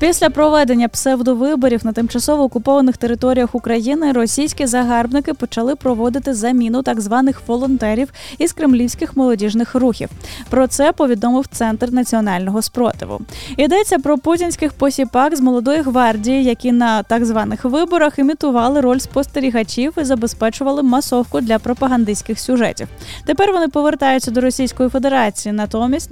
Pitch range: 230-275 Hz